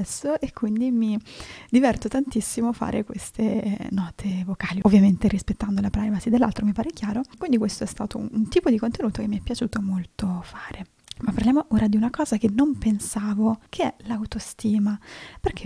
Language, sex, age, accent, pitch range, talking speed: Italian, female, 20-39, native, 205-230 Hz, 170 wpm